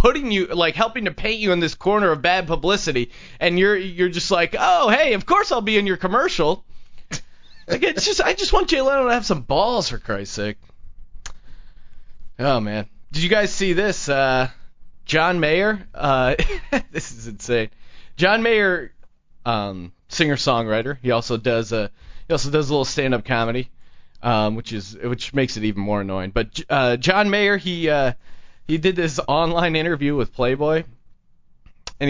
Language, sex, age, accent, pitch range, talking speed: English, male, 30-49, American, 120-180 Hz, 175 wpm